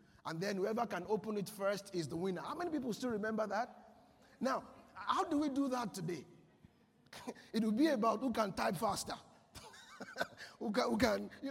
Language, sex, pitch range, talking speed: English, male, 180-260 Hz, 190 wpm